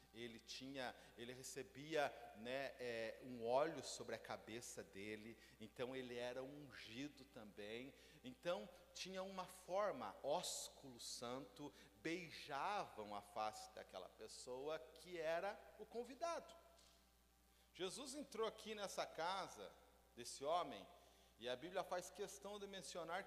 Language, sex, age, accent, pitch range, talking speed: Portuguese, male, 40-59, Brazilian, 120-190 Hz, 115 wpm